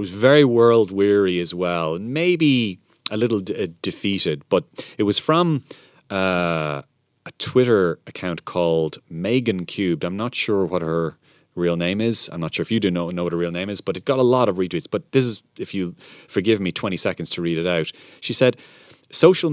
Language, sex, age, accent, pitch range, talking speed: English, male, 30-49, Irish, 85-120 Hz, 200 wpm